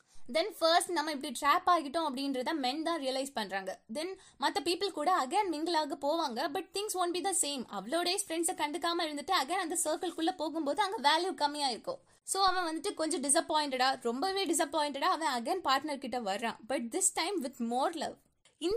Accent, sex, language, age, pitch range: native, female, Tamil, 20-39, 255-345 Hz